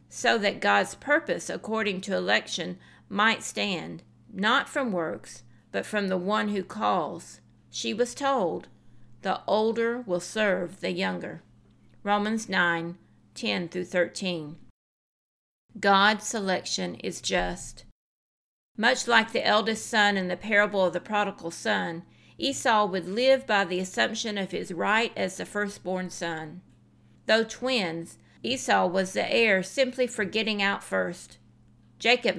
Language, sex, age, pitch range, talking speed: English, female, 50-69, 180-230 Hz, 130 wpm